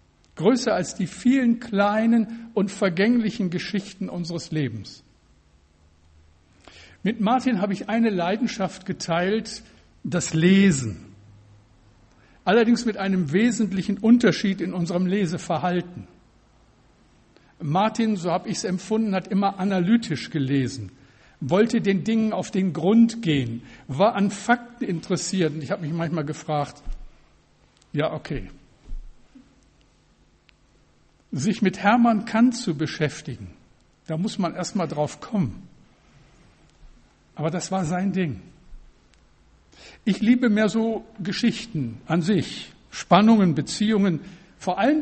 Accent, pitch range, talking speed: German, 140-210 Hz, 115 wpm